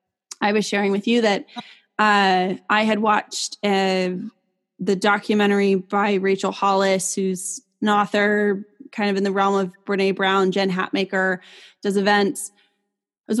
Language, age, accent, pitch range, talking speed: English, 20-39, American, 195-230 Hz, 150 wpm